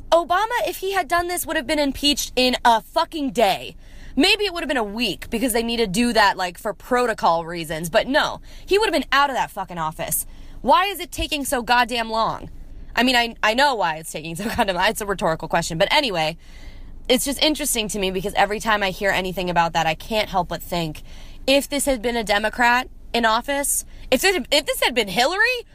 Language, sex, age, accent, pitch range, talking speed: English, female, 20-39, American, 190-285 Hz, 235 wpm